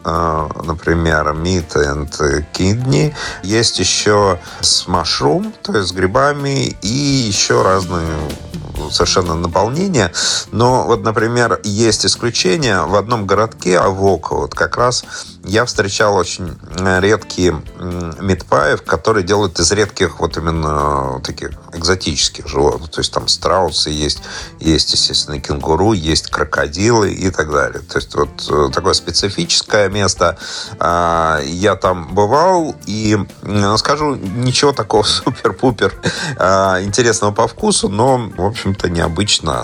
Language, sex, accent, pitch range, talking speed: Russian, male, native, 85-105 Hz, 115 wpm